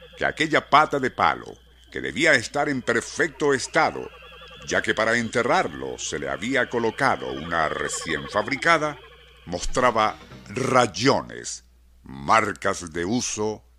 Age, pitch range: 60-79, 85-140 Hz